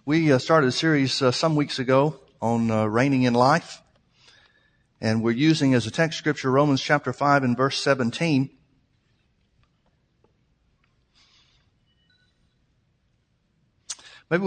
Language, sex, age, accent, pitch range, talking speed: English, male, 60-79, American, 130-155 Hz, 105 wpm